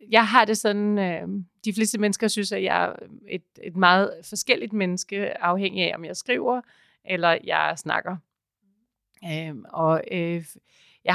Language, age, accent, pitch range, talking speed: Danish, 30-49, native, 170-205 Hz, 155 wpm